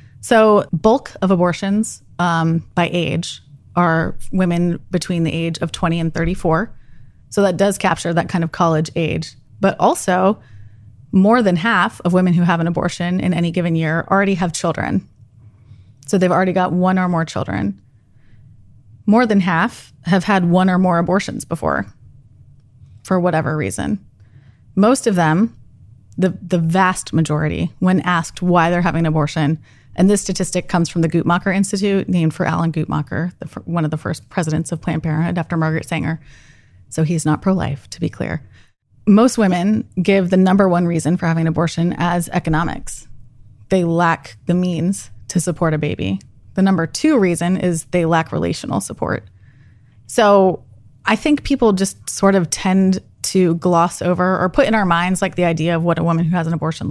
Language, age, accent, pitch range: English, 20-39, American, 140-185 Hz